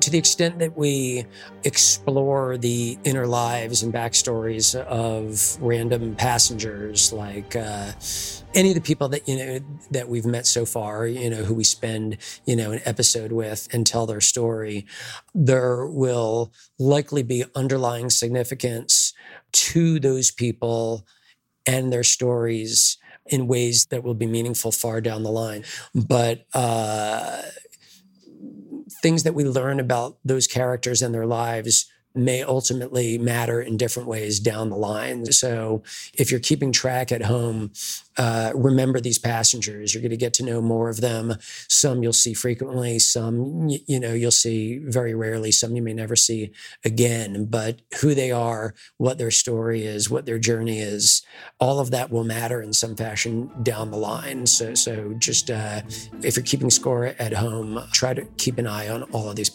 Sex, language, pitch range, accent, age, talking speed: male, English, 110-125 Hz, American, 40-59, 165 wpm